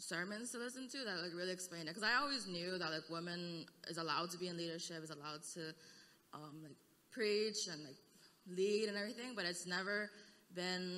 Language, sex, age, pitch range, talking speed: English, female, 20-39, 160-190 Hz, 200 wpm